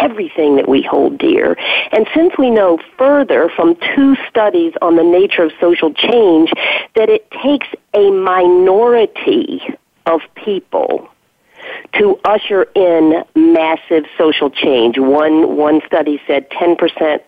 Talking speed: 130 wpm